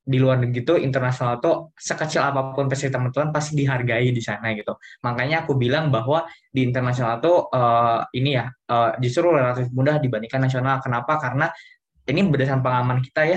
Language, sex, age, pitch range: Indonesian, male, 10-29, 120-145 Hz